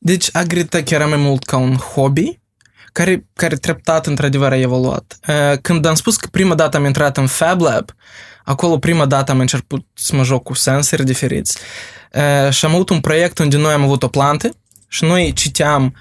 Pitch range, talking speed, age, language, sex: 135-165 Hz, 185 wpm, 20-39, Romanian, male